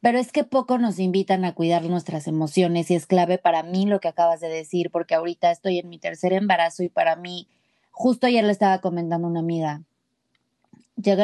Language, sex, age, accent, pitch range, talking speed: Spanish, female, 20-39, Mexican, 180-230 Hz, 205 wpm